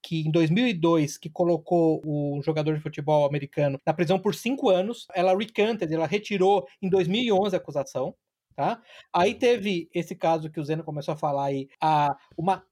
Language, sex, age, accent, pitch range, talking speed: Portuguese, male, 20-39, Brazilian, 155-195 Hz, 170 wpm